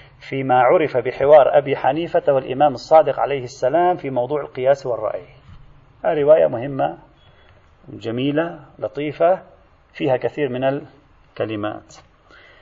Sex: male